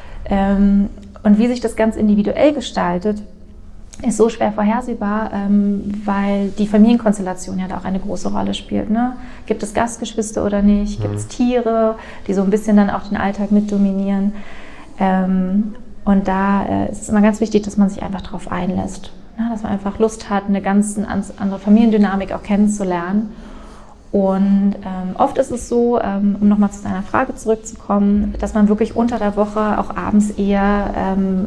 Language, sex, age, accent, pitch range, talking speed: German, female, 20-39, German, 190-215 Hz, 165 wpm